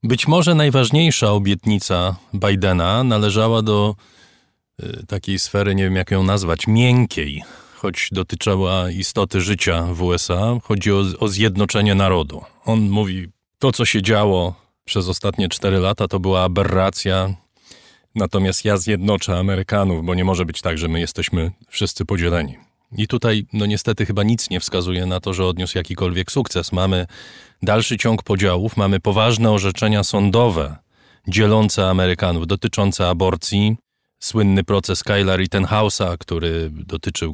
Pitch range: 90-105 Hz